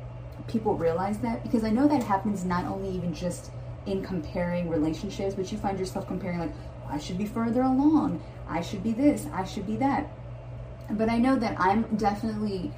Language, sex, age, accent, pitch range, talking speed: English, female, 30-49, American, 155-210 Hz, 190 wpm